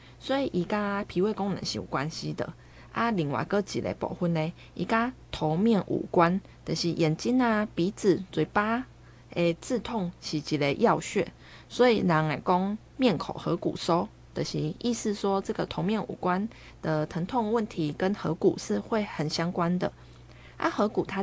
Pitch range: 170-225 Hz